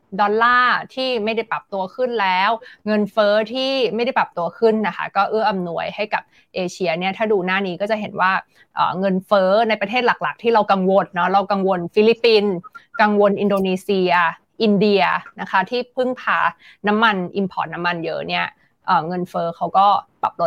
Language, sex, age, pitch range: Thai, female, 20-39, 190-230 Hz